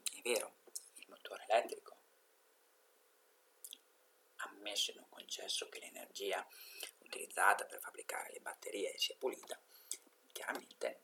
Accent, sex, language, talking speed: native, male, Italian, 100 wpm